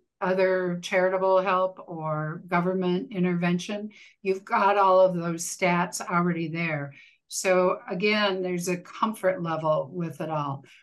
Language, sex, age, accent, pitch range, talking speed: English, female, 60-79, American, 170-200 Hz, 130 wpm